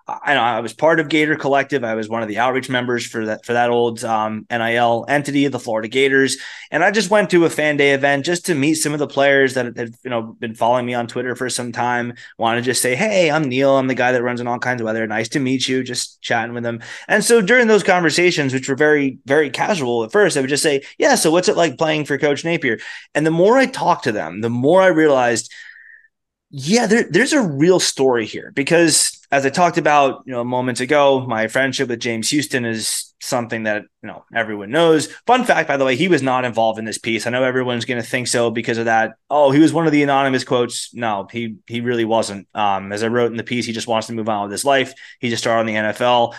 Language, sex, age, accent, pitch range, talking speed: English, male, 20-39, American, 115-145 Hz, 260 wpm